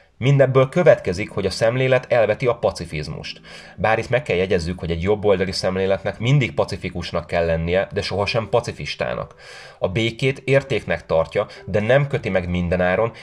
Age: 30-49